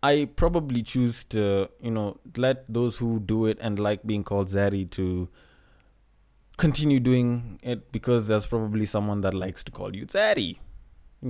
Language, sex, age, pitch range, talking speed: English, male, 20-39, 100-125 Hz, 165 wpm